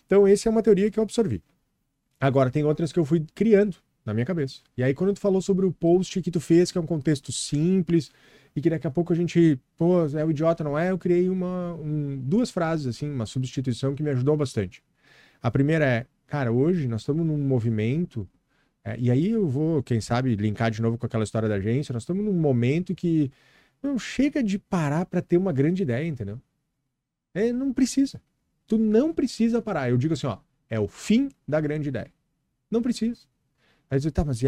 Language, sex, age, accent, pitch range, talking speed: Portuguese, male, 40-59, Brazilian, 135-185 Hz, 210 wpm